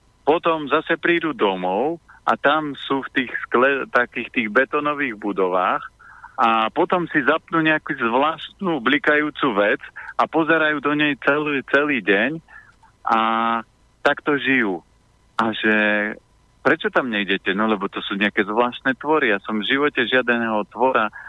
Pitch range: 105-140 Hz